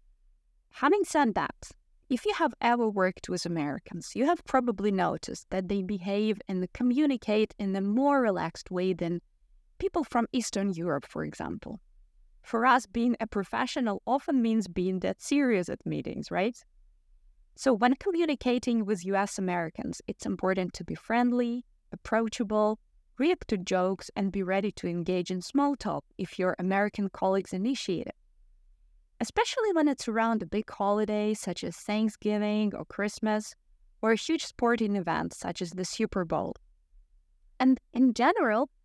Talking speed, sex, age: 150 wpm, female, 20-39